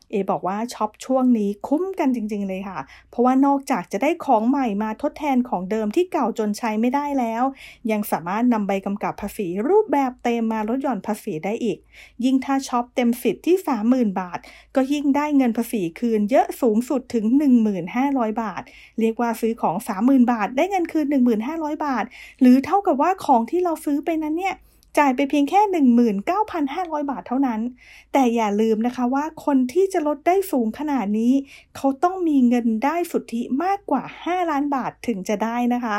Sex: female